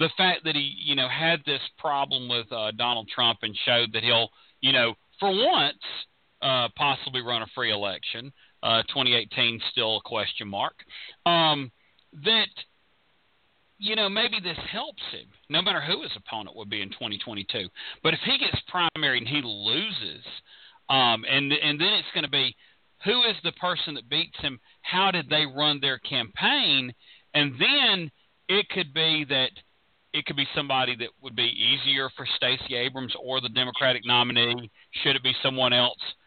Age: 40-59